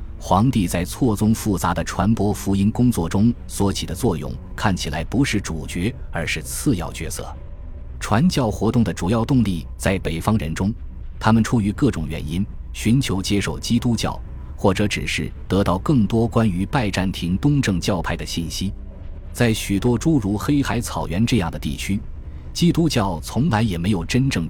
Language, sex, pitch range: Chinese, male, 80-110 Hz